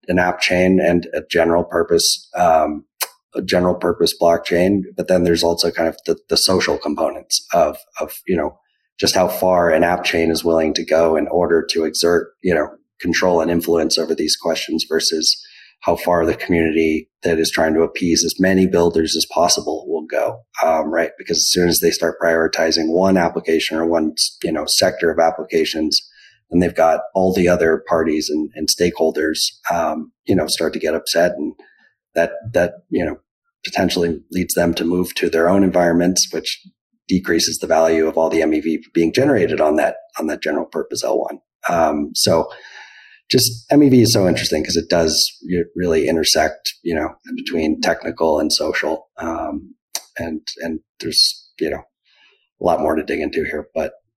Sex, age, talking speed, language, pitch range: male, 30-49, 180 wpm, English, 80-125 Hz